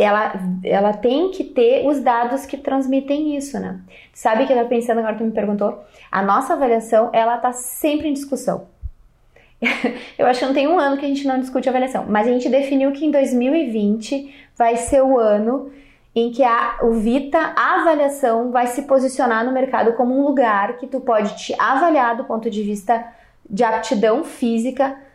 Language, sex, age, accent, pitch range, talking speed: Portuguese, female, 20-39, Brazilian, 215-270 Hz, 195 wpm